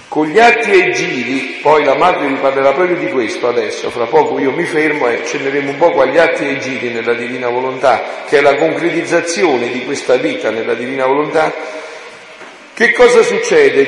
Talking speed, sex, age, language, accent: 185 wpm, male, 50-69, Italian, native